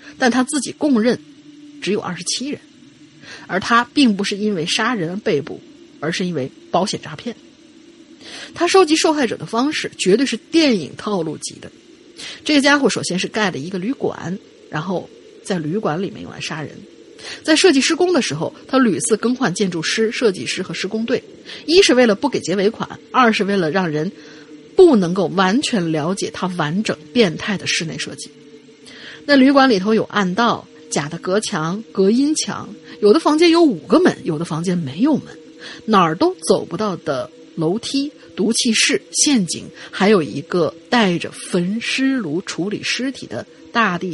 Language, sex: Chinese, female